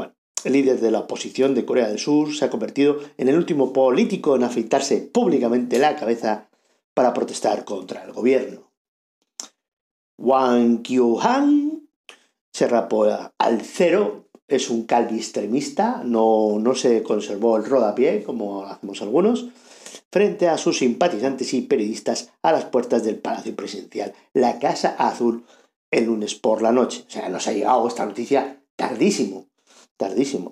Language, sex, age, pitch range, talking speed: Spanish, male, 50-69, 110-145 Hz, 145 wpm